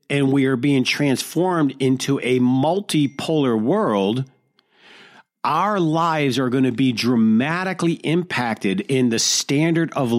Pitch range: 125-165 Hz